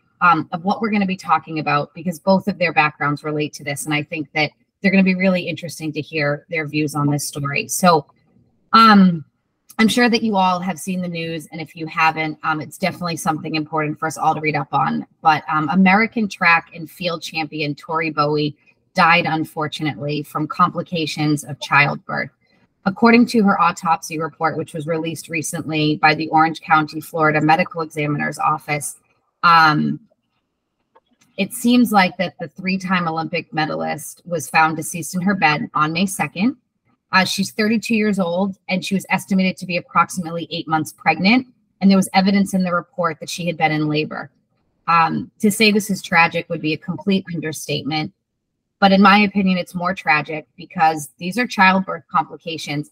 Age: 20-39